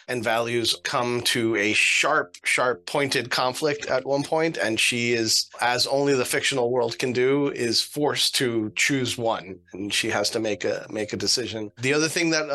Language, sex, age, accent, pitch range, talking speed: English, male, 30-49, American, 120-140 Hz, 190 wpm